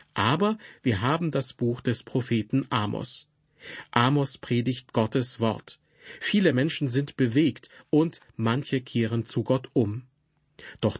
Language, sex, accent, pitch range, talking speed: German, male, German, 115-145 Hz, 125 wpm